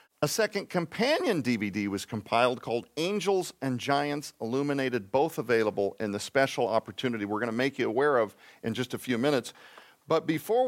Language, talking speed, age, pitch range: English, 175 wpm, 50-69, 105-145 Hz